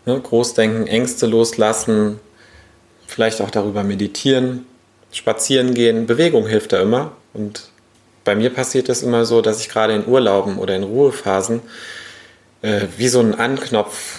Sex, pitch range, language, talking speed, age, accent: male, 110-130 Hz, German, 140 wpm, 30-49, German